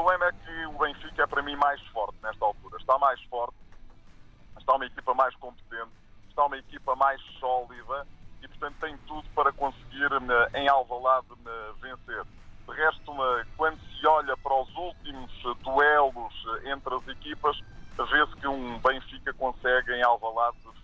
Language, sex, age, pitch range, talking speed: Portuguese, male, 20-39, 120-145 Hz, 130 wpm